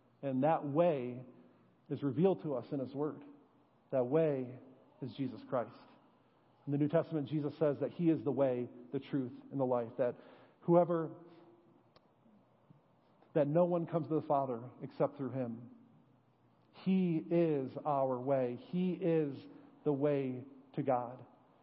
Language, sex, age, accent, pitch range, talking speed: English, male, 40-59, American, 135-175 Hz, 145 wpm